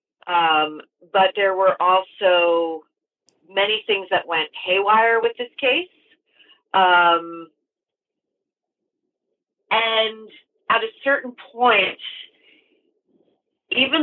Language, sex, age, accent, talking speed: English, female, 40-59, American, 85 wpm